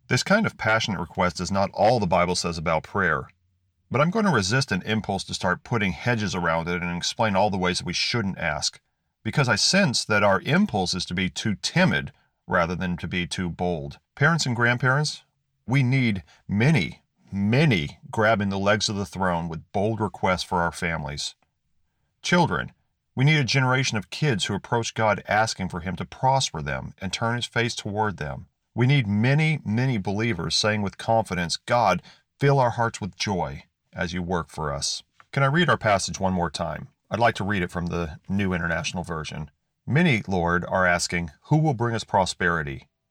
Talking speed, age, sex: 195 wpm, 40-59, male